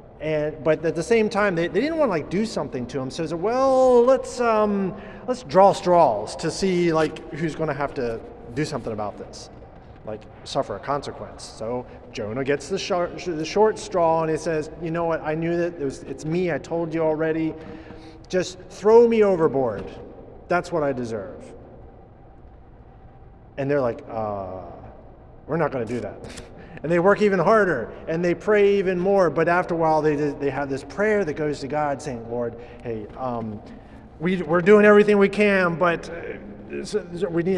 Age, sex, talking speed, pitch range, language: 30-49, male, 190 wpm, 130-190 Hz, English